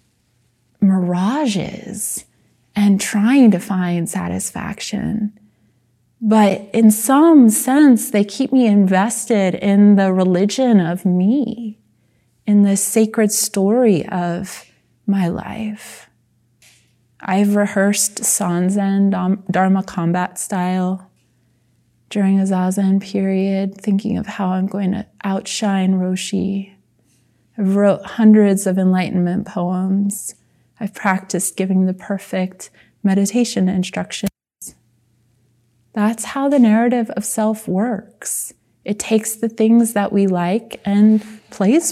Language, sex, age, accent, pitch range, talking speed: English, female, 20-39, American, 180-210 Hz, 105 wpm